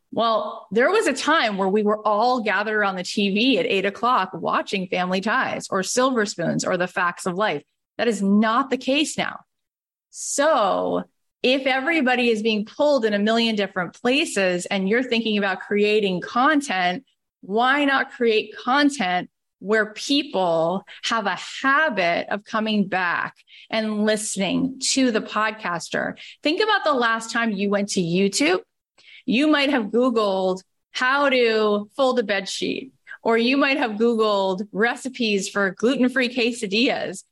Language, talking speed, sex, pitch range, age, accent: English, 155 wpm, female, 195-255 Hz, 30-49, American